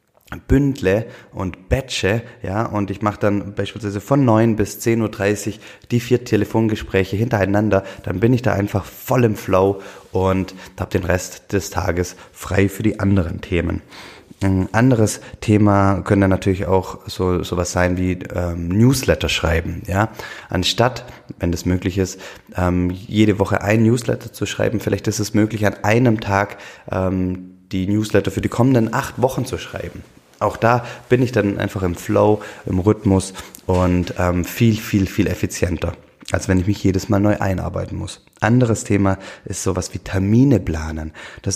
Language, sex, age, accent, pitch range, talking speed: German, male, 20-39, German, 90-105 Hz, 165 wpm